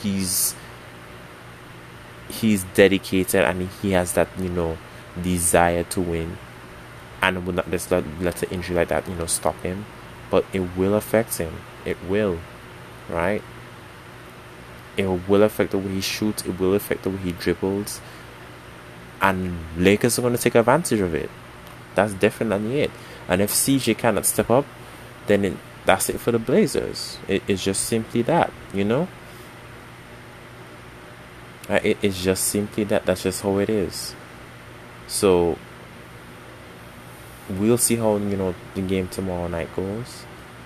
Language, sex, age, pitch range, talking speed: English, male, 20-39, 70-100 Hz, 150 wpm